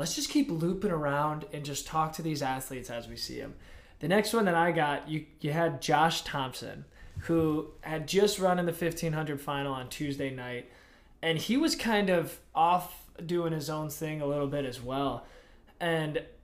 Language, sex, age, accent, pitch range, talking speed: English, male, 20-39, American, 140-165 Hz, 195 wpm